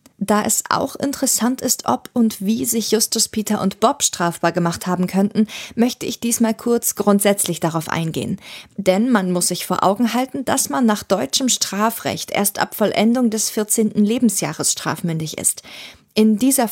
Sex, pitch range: female, 185-230 Hz